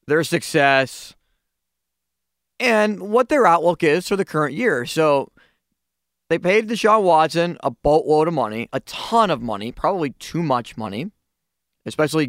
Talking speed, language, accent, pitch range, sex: 140 wpm, English, American, 115-185 Hz, male